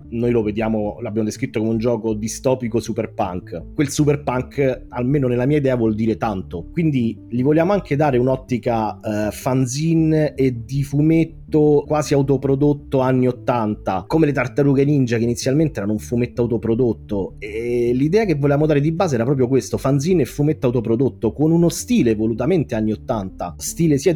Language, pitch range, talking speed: Italian, 110-145 Hz, 165 wpm